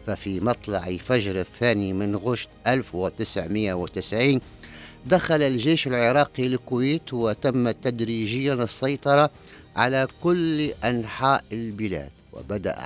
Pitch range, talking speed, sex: 95-125 Hz, 90 wpm, male